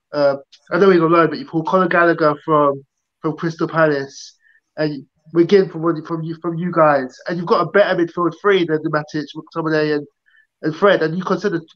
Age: 20-39